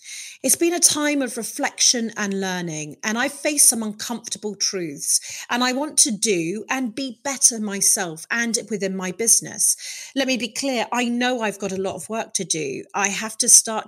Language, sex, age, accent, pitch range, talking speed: English, female, 30-49, British, 195-270 Hz, 195 wpm